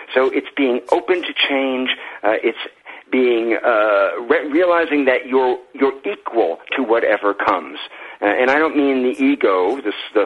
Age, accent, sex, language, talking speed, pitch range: 50-69, American, male, English, 165 wpm, 115-160 Hz